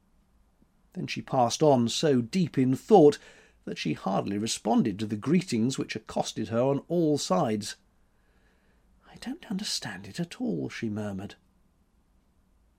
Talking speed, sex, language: 135 wpm, male, English